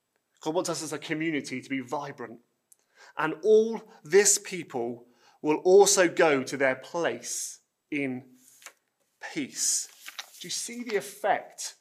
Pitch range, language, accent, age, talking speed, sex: 135-185 Hz, English, British, 30-49, 130 wpm, male